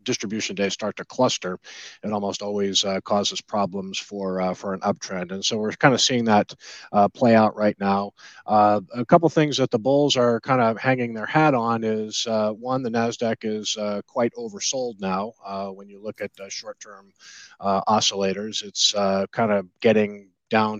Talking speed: 195 wpm